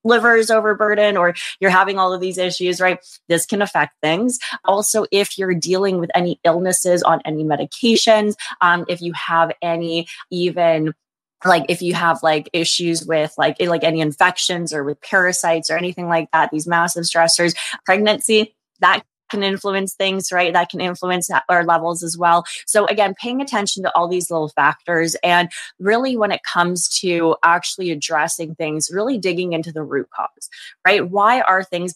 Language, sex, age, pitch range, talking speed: English, female, 20-39, 165-195 Hz, 175 wpm